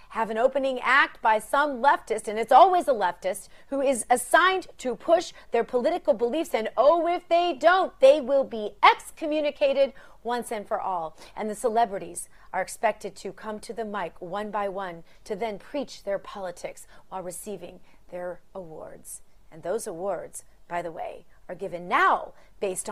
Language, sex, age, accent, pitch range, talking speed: English, female, 40-59, American, 200-335 Hz, 170 wpm